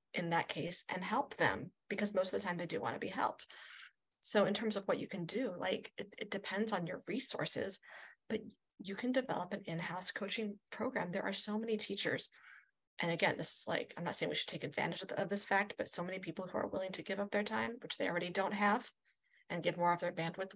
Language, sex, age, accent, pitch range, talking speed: English, female, 20-39, American, 175-210 Hz, 245 wpm